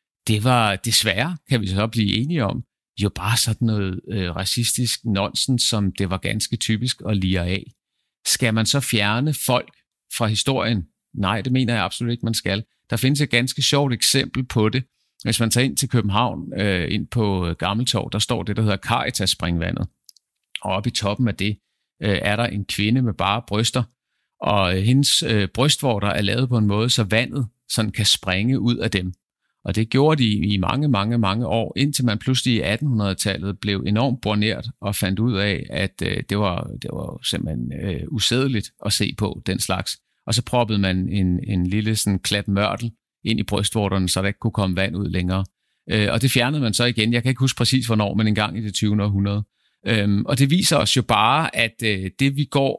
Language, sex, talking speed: Danish, male, 200 wpm